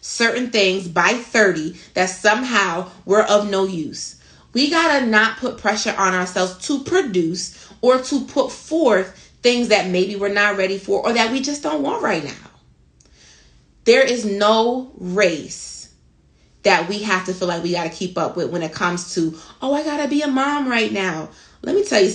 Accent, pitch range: American, 180-245 Hz